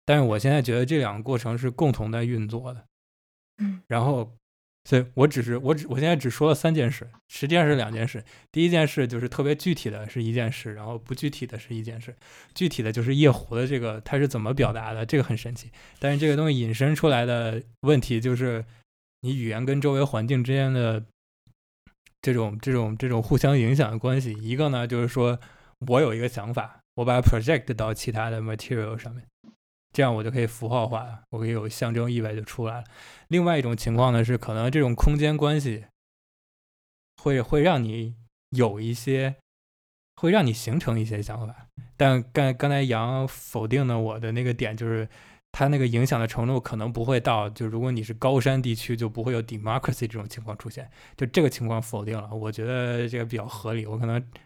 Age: 20-39